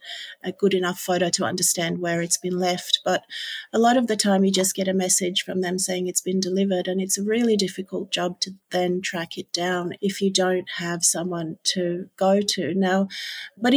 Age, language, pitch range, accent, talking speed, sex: 40-59, English, 185-210 Hz, Australian, 210 wpm, female